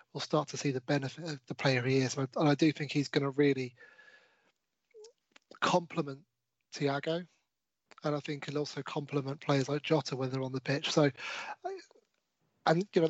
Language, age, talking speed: English, 30-49, 190 wpm